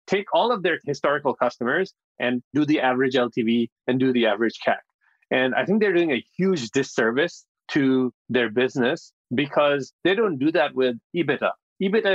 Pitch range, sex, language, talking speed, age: 125-165 Hz, male, English, 175 wpm, 30-49